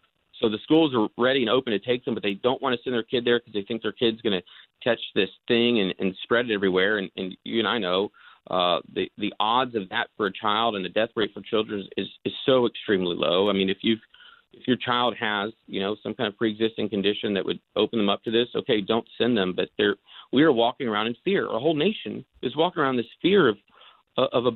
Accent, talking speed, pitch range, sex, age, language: American, 255 wpm, 100-120 Hz, male, 40-59, English